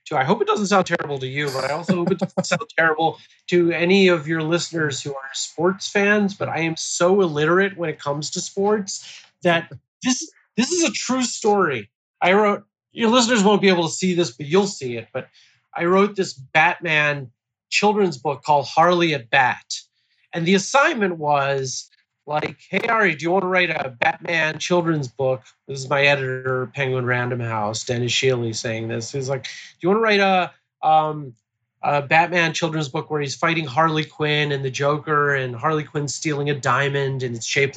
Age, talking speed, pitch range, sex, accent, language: 30-49, 195 wpm, 140-185 Hz, male, American, English